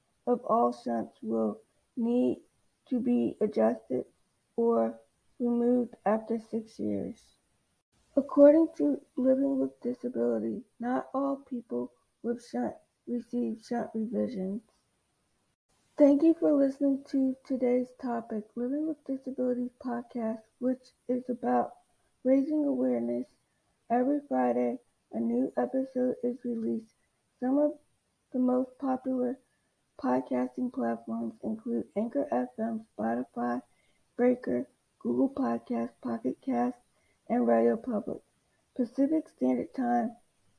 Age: 60-79